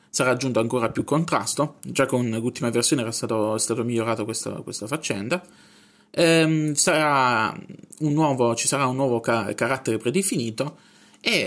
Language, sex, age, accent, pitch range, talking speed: Italian, male, 20-39, native, 115-160 Hz, 150 wpm